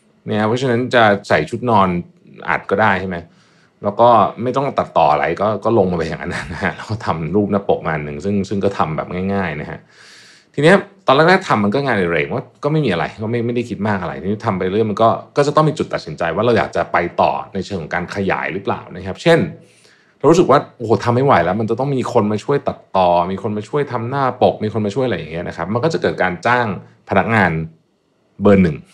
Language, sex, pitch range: Thai, male, 95-125 Hz